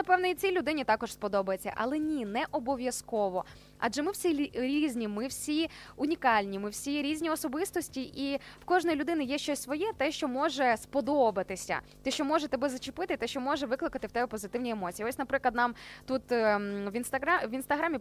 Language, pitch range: Ukrainian, 230-295 Hz